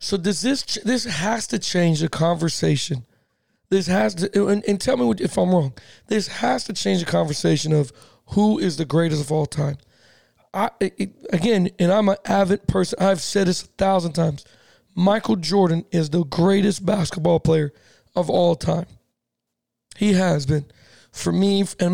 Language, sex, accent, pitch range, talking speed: English, male, American, 160-200 Hz, 170 wpm